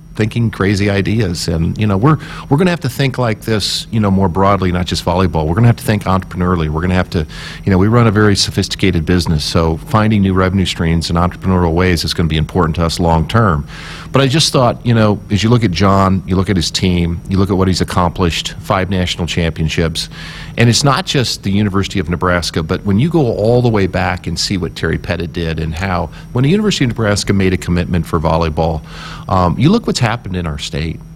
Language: English